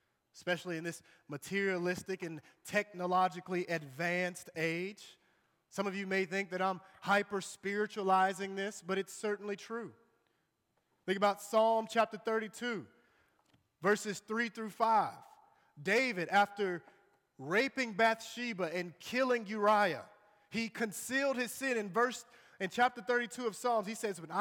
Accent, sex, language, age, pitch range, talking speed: American, male, English, 30-49, 155-220 Hz, 125 wpm